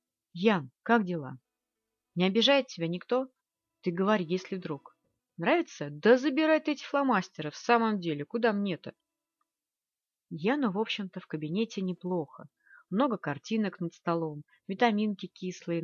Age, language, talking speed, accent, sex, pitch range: 30-49, Russian, 130 wpm, native, female, 160-225 Hz